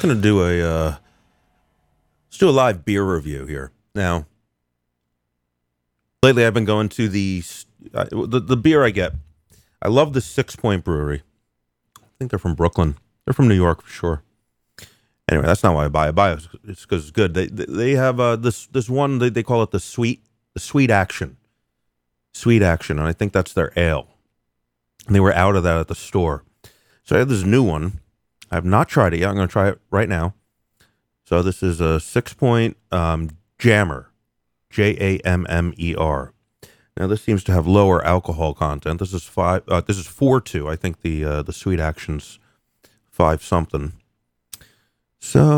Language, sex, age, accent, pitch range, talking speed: English, male, 30-49, American, 80-110 Hz, 180 wpm